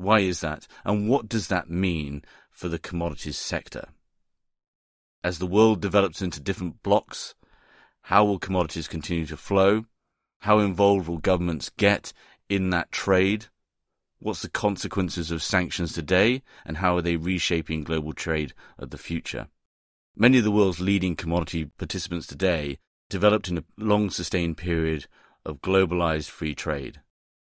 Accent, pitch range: British, 80-100 Hz